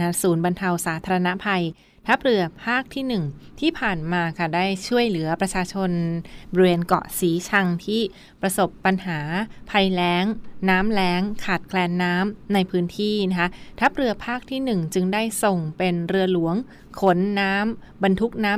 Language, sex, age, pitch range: Thai, female, 20-39, 175-205 Hz